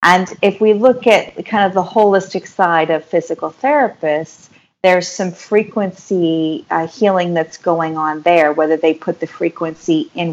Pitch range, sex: 155-185 Hz, female